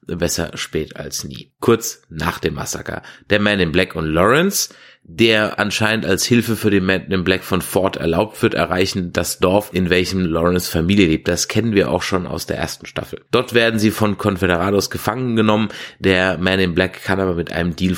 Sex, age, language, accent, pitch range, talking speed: male, 30-49, German, German, 90-110 Hz, 200 wpm